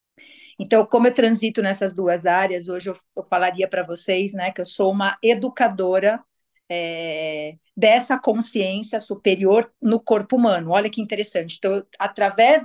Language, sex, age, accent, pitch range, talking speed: Portuguese, female, 40-59, Brazilian, 195-245 Hz, 140 wpm